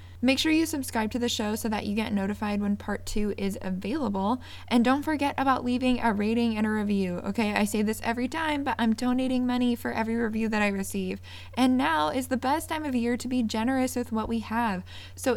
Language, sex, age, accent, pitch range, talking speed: English, female, 20-39, American, 205-245 Hz, 230 wpm